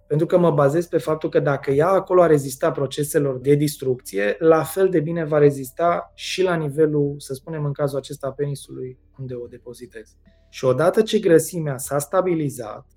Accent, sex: native, male